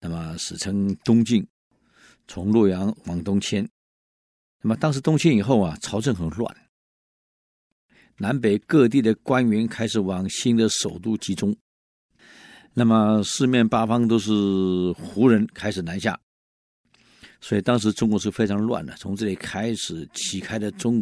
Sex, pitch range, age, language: male, 95-115 Hz, 50-69, Chinese